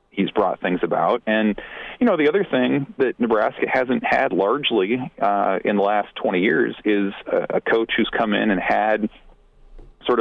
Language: English